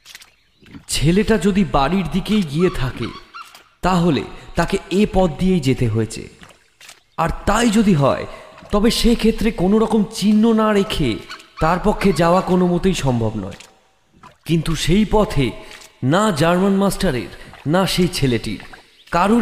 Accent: Indian